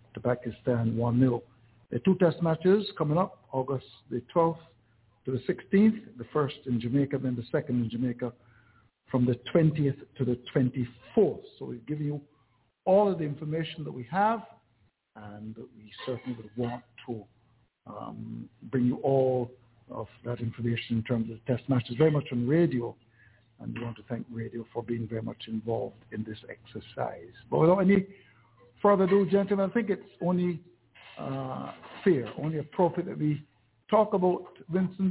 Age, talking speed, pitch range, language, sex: 60-79, 170 wpm, 120-160 Hz, English, male